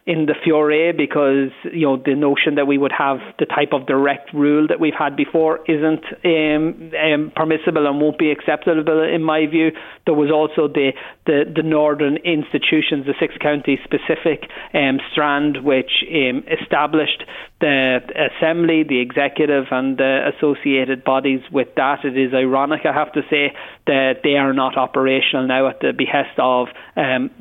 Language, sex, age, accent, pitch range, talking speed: English, male, 30-49, Irish, 135-155 Hz, 170 wpm